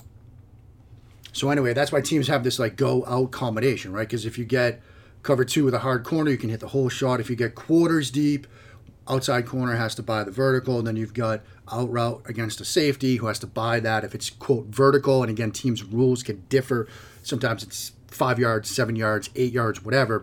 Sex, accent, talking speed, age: male, American, 215 wpm, 30-49